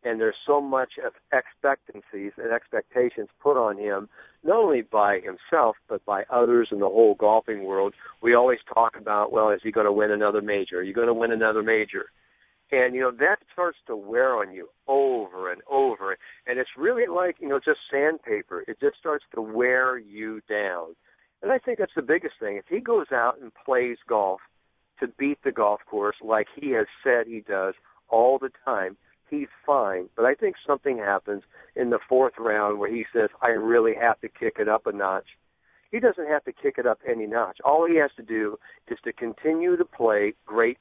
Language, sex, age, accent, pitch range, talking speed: English, male, 50-69, American, 110-170 Hz, 205 wpm